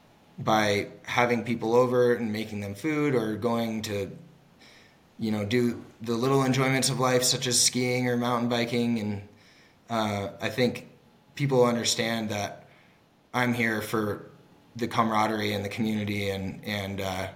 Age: 20-39